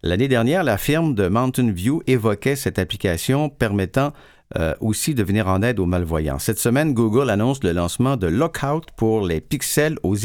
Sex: male